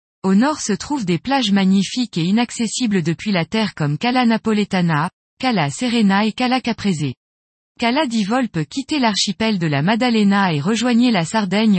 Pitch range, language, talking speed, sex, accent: 175-240 Hz, French, 160 wpm, female, French